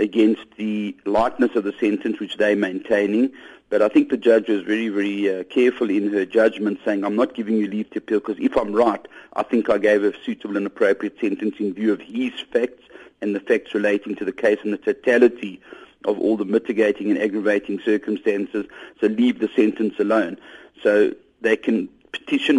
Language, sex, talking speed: English, male, 195 wpm